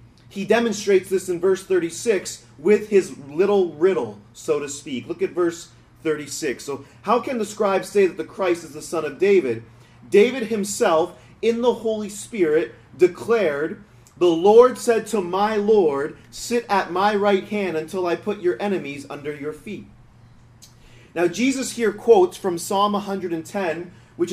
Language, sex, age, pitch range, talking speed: English, male, 30-49, 125-205 Hz, 160 wpm